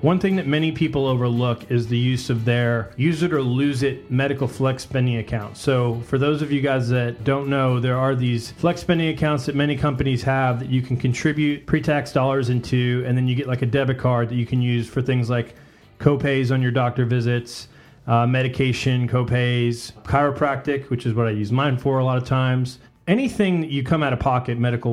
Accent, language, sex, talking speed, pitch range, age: American, English, male, 210 wpm, 120-140 Hz, 30-49